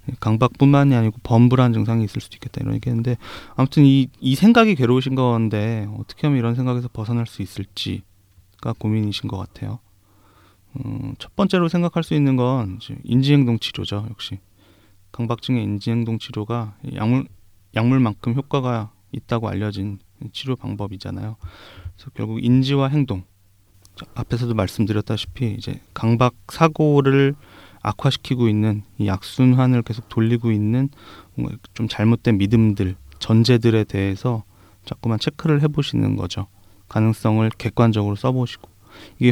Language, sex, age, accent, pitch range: Korean, male, 30-49, native, 105-130 Hz